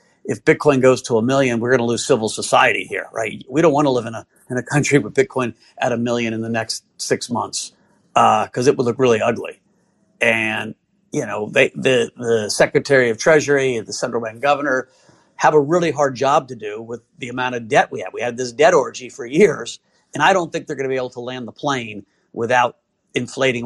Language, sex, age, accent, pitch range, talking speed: English, male, 50-69, American, 120-145 Hz, 230 wpm